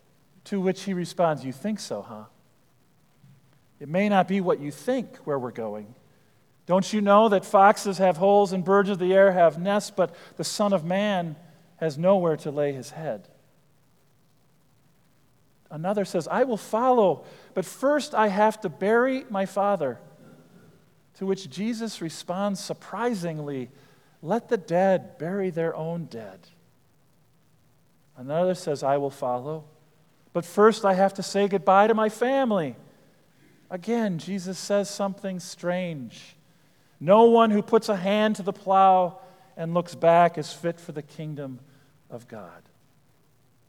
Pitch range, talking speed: 150-200 Hz, 145 wpm